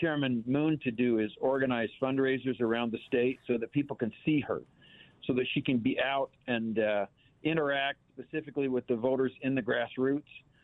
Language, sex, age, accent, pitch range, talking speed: English, male, 50-69, American, 125-155 Hz, 180 wpm